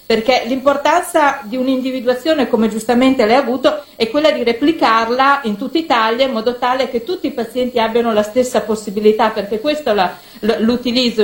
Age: 50-69